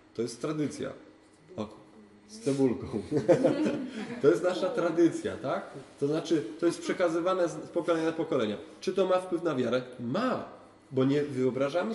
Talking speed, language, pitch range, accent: 145 wpm, Polish, 115-175 Hz, native